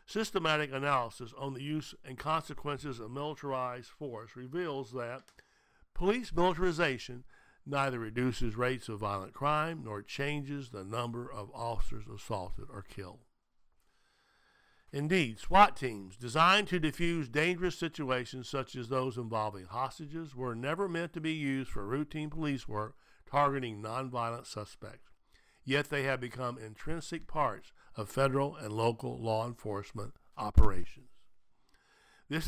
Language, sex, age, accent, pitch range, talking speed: English, male, 60-79, American, 115-150 Hz, 125 wpm